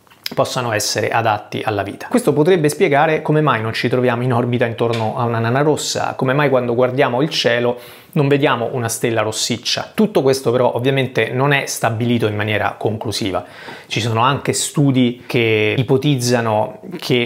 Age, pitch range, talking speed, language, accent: 30-49, 115-140 Hz, 165 wpm, Italian, native